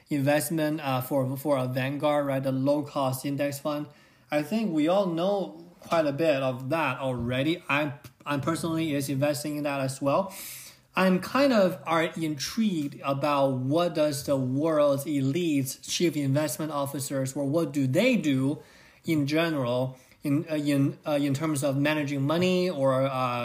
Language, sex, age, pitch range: English, male, 20-39, 135-160 Hz